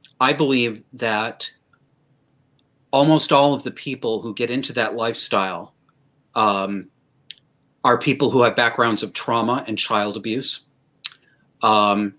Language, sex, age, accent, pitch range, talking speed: English, male, 40-59, American, 110-140 Hz, 125 wpm